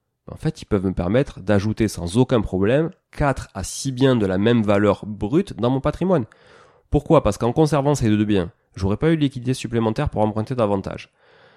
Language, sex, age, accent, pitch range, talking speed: French, male, 30-49, French, 100-130 Hz, 195 wpm